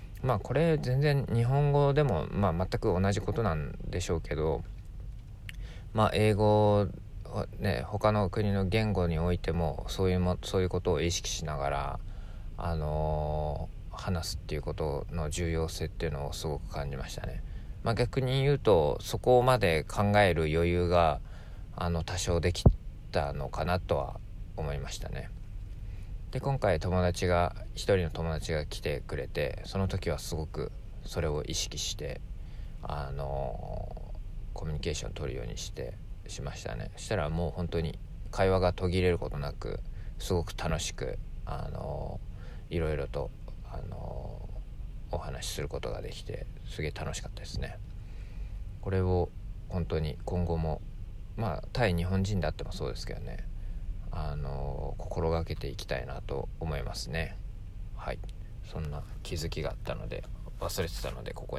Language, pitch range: Japanese, 80-105 Hz